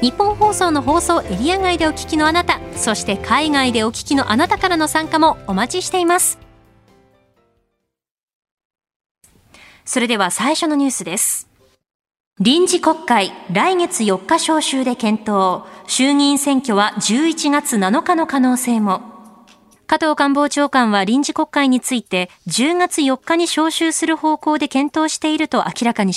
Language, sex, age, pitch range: Japanese, female, 20-39, 225-315 Hz